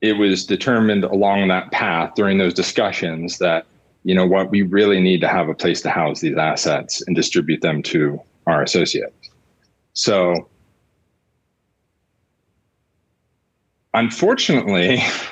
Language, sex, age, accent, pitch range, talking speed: English, male, 30-49, American, 95-120 Hz, 125 wpm